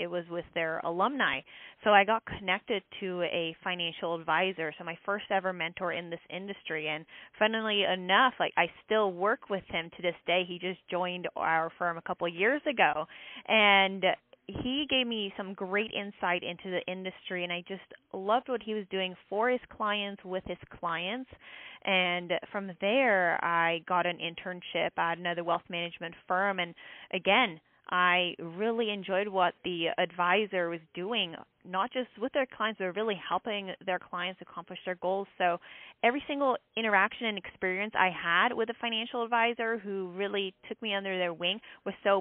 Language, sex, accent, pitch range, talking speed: English, female, American, 175-210 Hz, 175 wpm